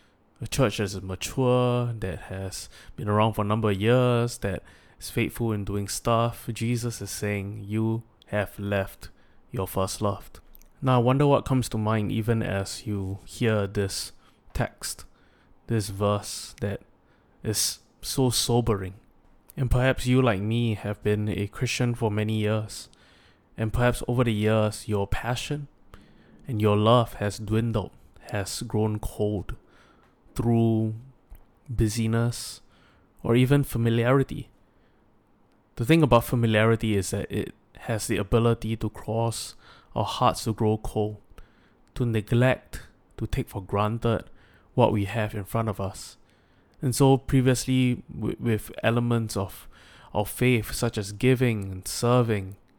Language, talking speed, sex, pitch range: English, 140 wpm, male, 100-120 Hz